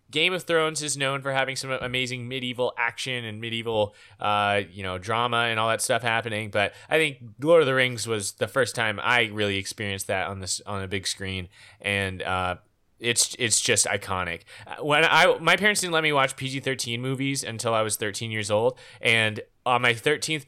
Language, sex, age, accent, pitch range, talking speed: English, male, 20-39, American, 105-140 Hz, 205 wpm